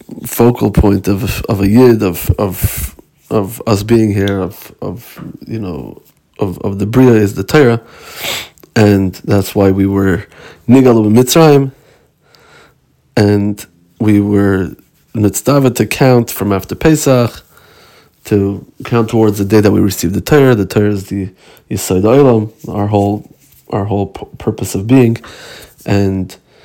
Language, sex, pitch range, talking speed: Hebrew, male, 100-115 Hz, 140 wpm